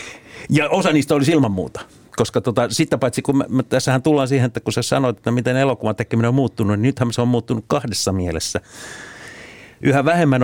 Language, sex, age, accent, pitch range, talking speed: Finnish, male, 50-69, native, 110-135 Hz, 200 wpm